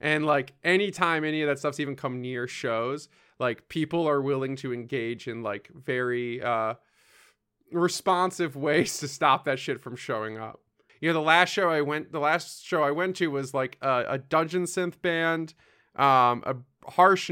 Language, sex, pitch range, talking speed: English, male, 145-180 Hz, 185 wpm